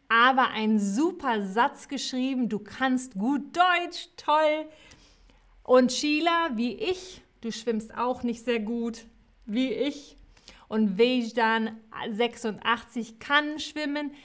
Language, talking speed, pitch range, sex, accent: German, 110 wpm, 210-275 Hz, female, German